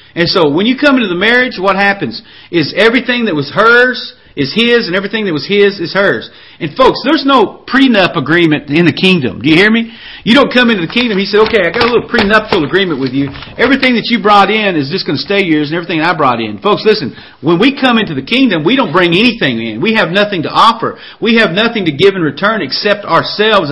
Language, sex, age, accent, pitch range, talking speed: English, male, 40-59, American, 165-230 Hz, 245 wpm